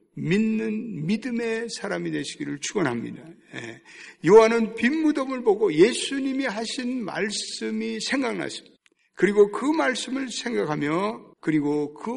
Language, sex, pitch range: Korean, male, 155-230 Hz